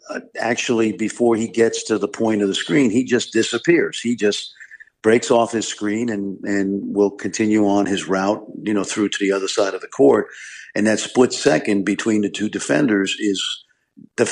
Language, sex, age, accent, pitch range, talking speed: English, male, 50-69, American, 100-115 Hz, 195 wpm